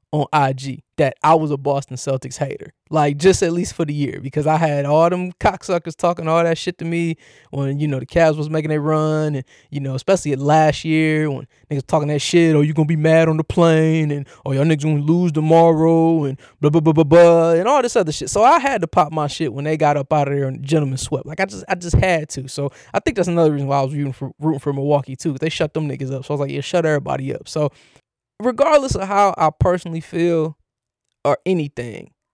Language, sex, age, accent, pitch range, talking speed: English, male, 20-39, American, 140-165 Hz, 250 wpm